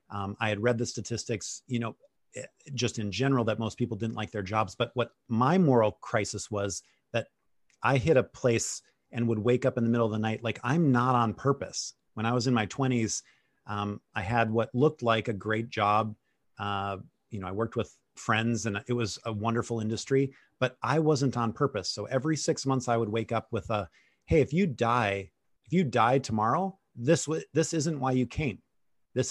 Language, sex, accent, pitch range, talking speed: English, male, American, 110-130 Hz, 210 wpm